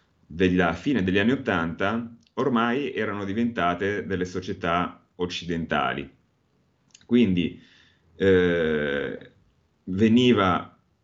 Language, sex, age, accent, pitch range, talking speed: Italian, male, 30-49, native, 85-100 Hz, 75 wpm